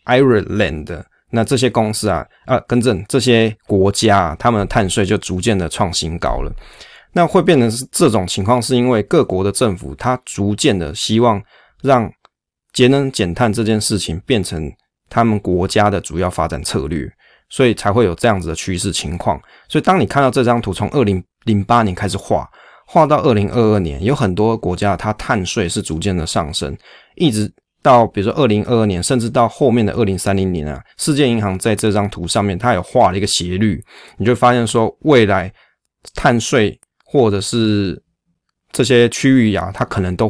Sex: male